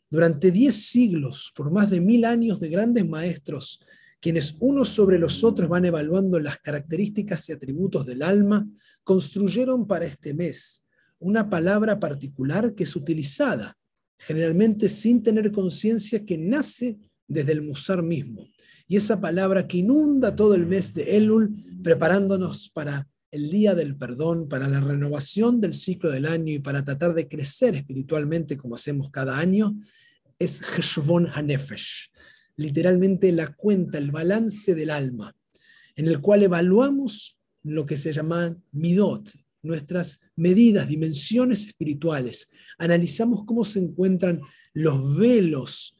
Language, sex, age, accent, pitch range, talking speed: Spanish, male, 40-59, Argentinian, 155-210 Hz, 140 wpm